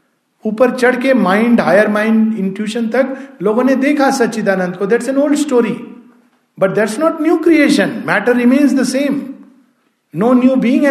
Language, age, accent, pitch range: Hindi, 50-69, native, 200-270 Hz